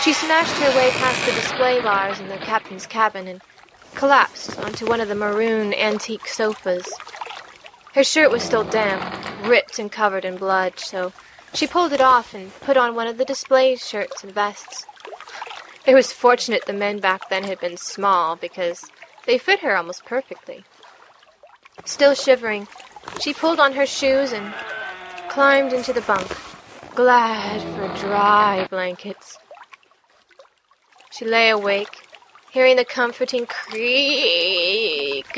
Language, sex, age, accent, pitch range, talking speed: English, female, 20-39, American, 200-280 Hz, 145 wpm